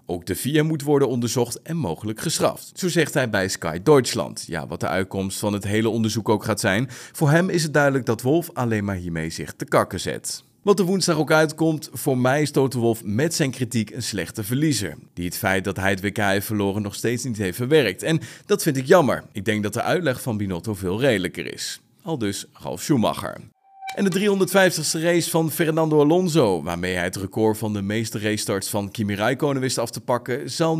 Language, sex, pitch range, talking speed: Dutch, male, 105-150 Hz, 220 wpm